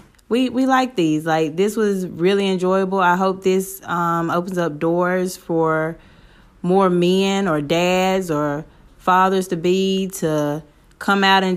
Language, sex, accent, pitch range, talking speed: English, female, American, 165-190 Hz, 140 wpm